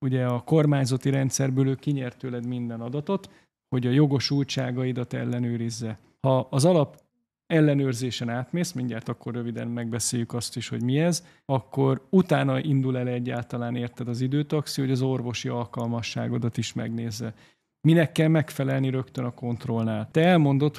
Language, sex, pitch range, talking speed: Hungarian, male, 120-140 Hz, 140 wpm